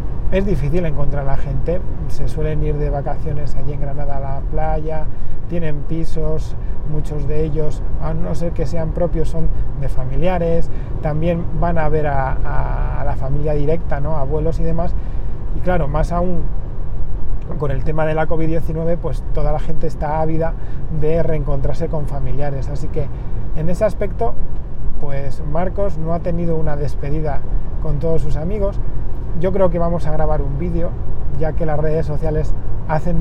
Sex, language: male, Spanish